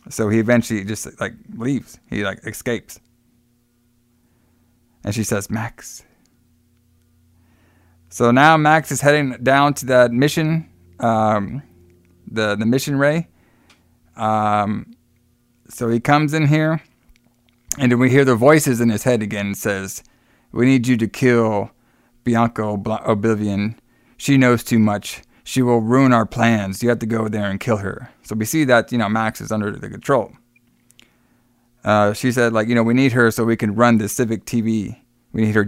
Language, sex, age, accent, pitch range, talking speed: English, male, 20-39, American, 110-125 Hz, 165 wpm